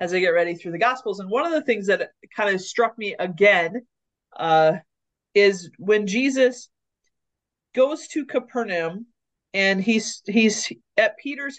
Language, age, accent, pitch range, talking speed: English, 30-49, American, 185-245 Hz, 155 wpm